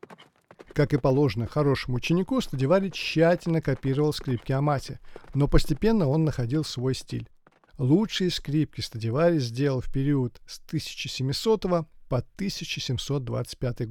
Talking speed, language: 110 wpm, Russian